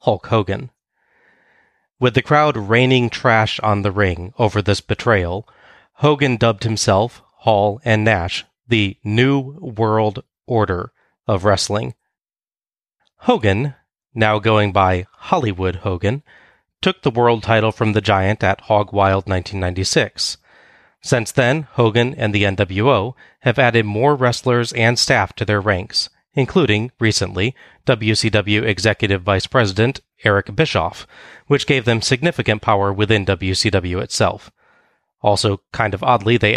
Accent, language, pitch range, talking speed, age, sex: American, English, 100-120 Hz, 125 wpm, 30-49, male